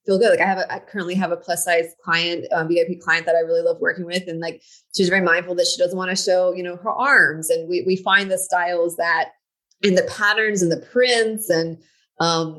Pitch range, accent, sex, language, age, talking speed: 170-210 Hz, American, female, English, 30-49, 250 wpm